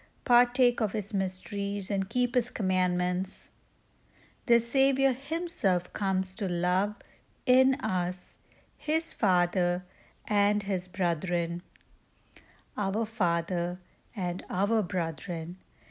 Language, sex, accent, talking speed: English, female, Indian, 100 wpm